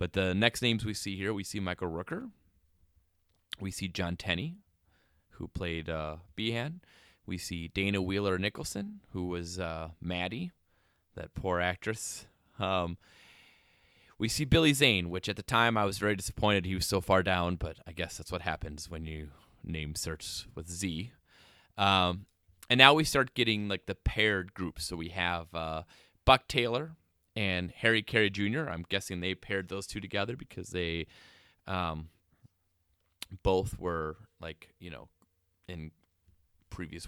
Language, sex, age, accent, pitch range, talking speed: English, male, 20-39, American, 85-105 Hz, 160 wpm